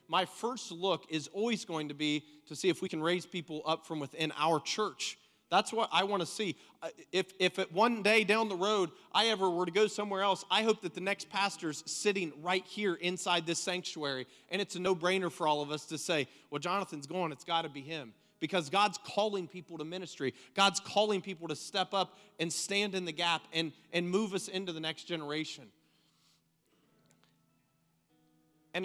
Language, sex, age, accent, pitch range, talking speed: English, male, 30-49, American, 150-190 Hz, 200 wpm